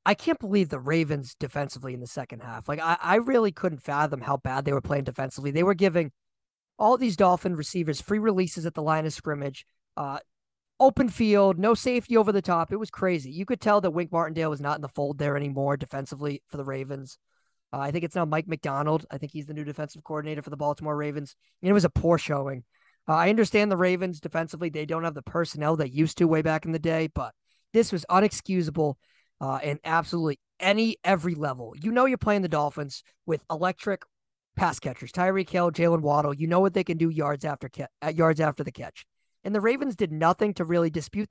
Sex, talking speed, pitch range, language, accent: male, 225 wpm, 150-195 Hz, English, American